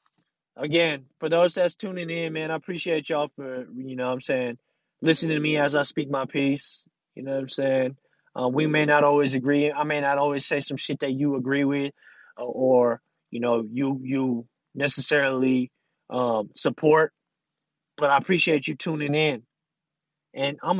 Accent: American